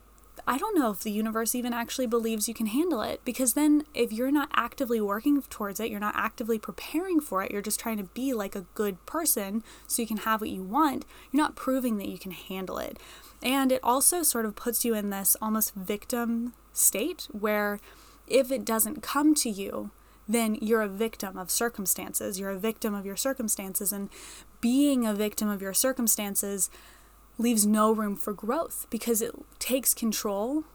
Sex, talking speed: female, 195 wpm